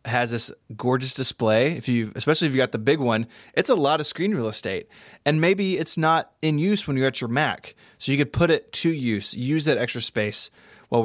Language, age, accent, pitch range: English, 20-39, American, 115-150 Hz